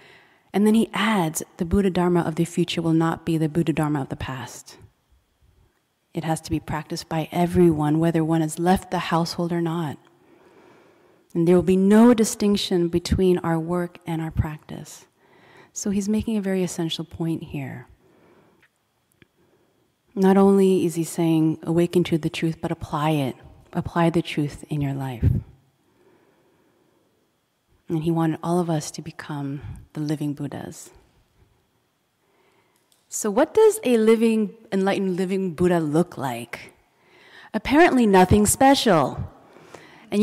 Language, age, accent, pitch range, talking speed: English, 30-49, American, 160-195 Hz, 145 wpm